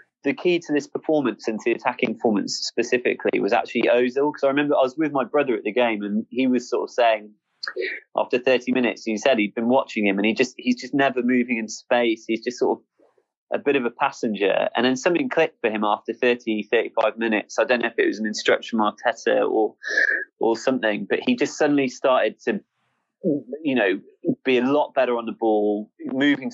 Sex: male